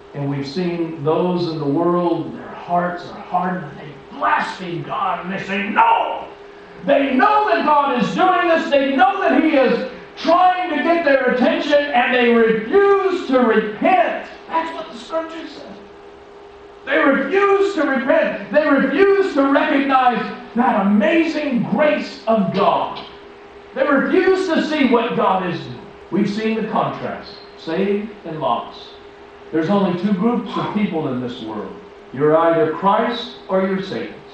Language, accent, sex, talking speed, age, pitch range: English, American, male, 155 wpm, 50-69, 190-290 Hz